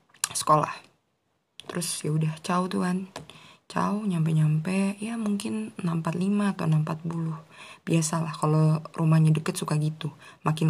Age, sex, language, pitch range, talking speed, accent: 20-39, female, Indonesian, 150-170 Hz, 110 wpm, native